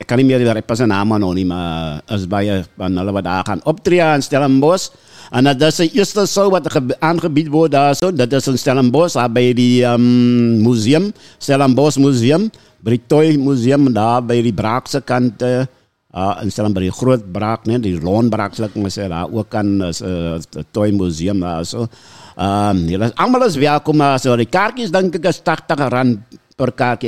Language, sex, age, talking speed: English, male, 60-79, 135 wpm